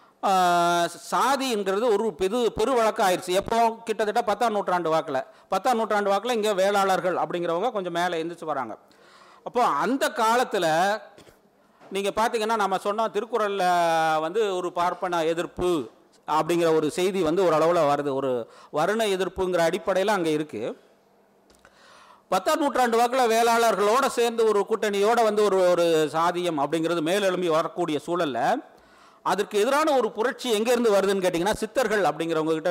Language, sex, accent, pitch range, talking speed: Tamil, male, native, 175-225 Hz, 120 wpm